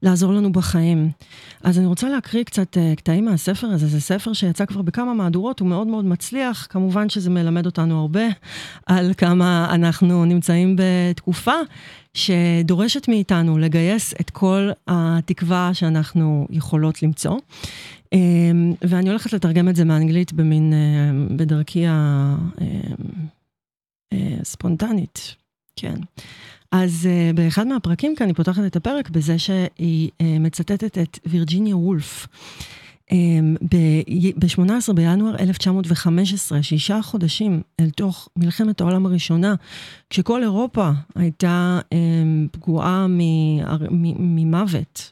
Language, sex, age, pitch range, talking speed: Hebrew, female, 30-49, 165-190 Hz, 105 wpm